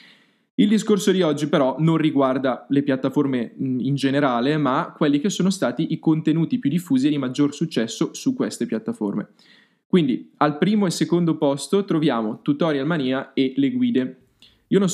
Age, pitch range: 10-29, 125-160 Hz